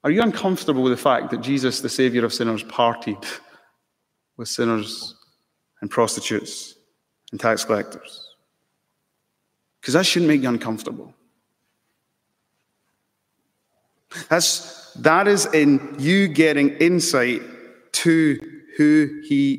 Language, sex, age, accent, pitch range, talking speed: English, male, 30-49, British, 110-150 Hz, 105 wpm